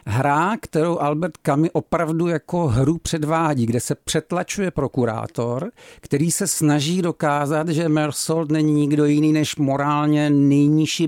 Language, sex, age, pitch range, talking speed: Czech, male, 50-69, 130-155 Hz, 130 wpm